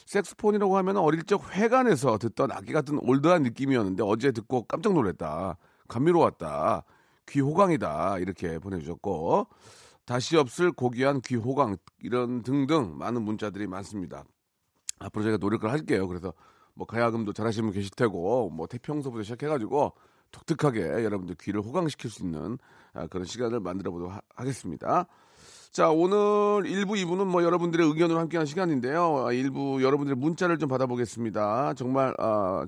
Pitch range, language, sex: 110-160 Hz, Korean, male